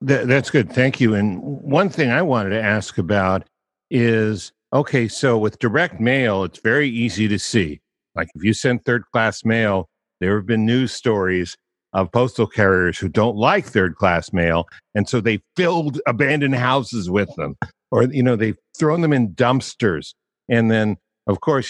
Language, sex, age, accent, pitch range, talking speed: English, male, 60-79, American, 95-125 Hz, 175 wpm